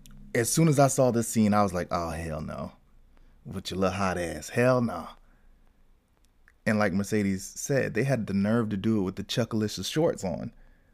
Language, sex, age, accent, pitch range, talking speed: English, male, 20-39, American, 105-140 Hz, 195 wpm